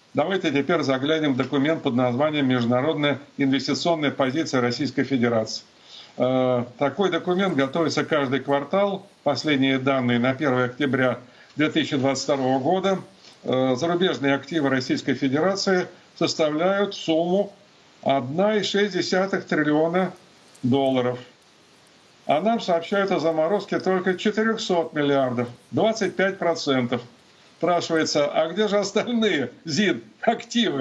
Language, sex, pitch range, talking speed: Russian, male, 140-185 Hz, 95 wpm